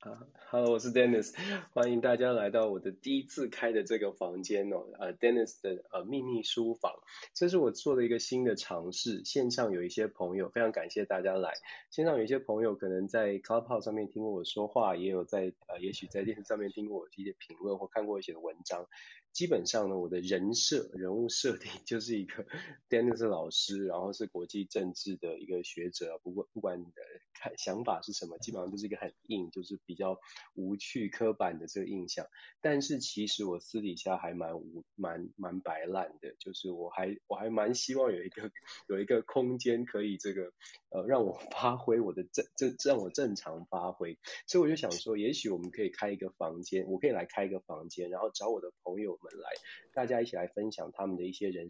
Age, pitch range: 20-39, 95-115 Hz